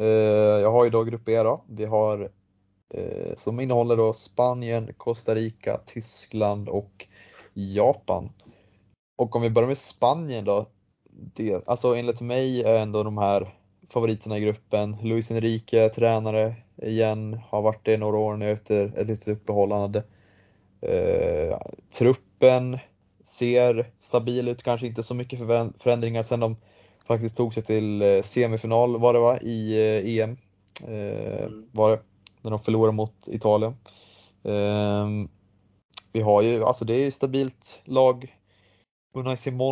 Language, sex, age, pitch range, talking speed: Swedish, male, 20-39, 105-120 Hz, 140 wpm